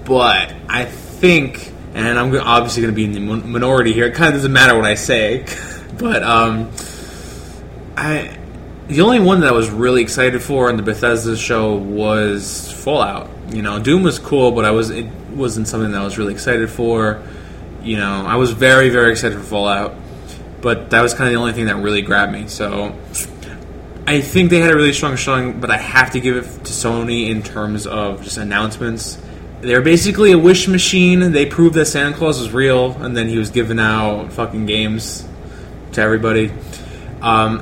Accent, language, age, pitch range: American, English, 20-39, 105-130 Hz